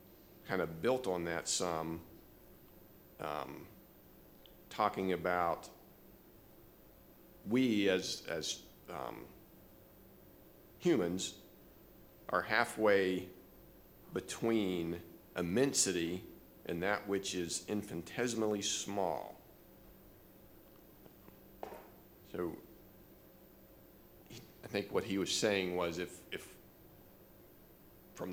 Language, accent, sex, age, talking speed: English, American, male, 40-59, 75 wpm